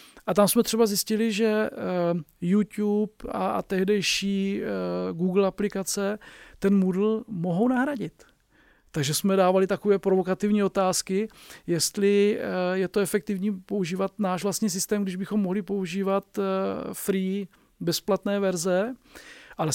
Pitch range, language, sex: 180-210 Hz, Czech, male